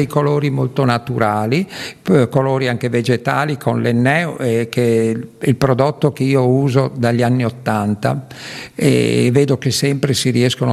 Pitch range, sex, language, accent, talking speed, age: 120-145 Hz, male, Italian, native, 140 wpm, 50-69